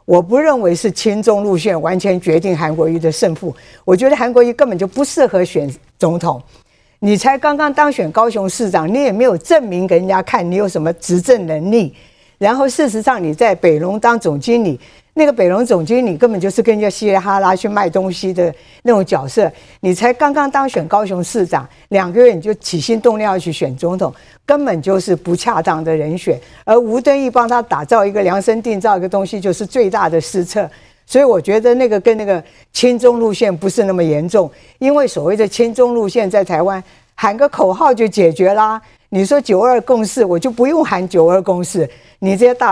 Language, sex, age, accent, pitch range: Chinese, female, 50-69, American, 175-240 Hz